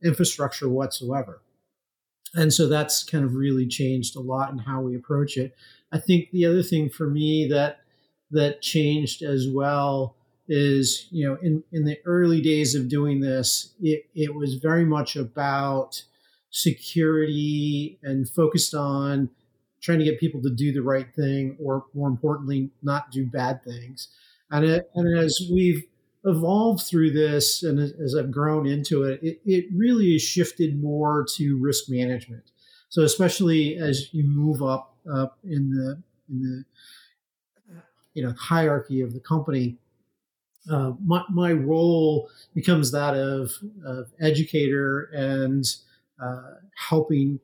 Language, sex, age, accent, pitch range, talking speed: English, male, 50-69, American, 135-160 Hz, 150 wpm